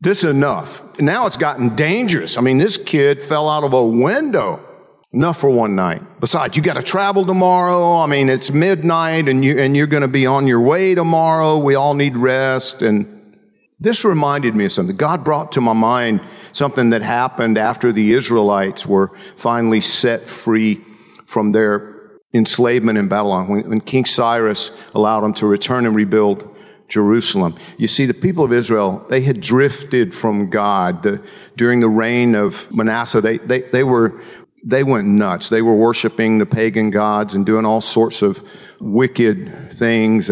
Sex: male